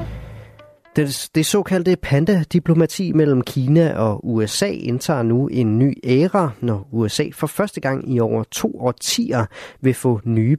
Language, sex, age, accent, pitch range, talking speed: Danish, male, 30-49, native, 115-150 Hz, 140 wpm